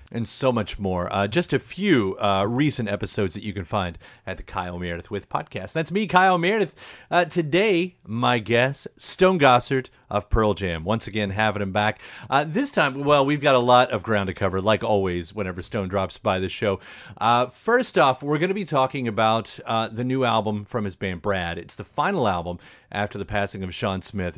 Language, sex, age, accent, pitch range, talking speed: English, male, 40-59, American, 100-140 Hz, 210 wpm